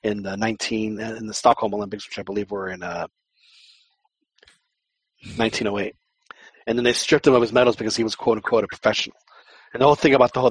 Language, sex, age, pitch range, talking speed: English, male, 30-49, 110-135 Hz, 205 wpm